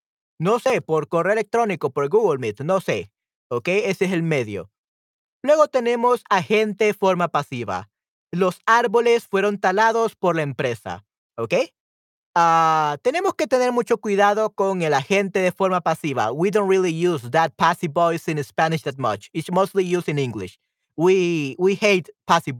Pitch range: 155-220 Hz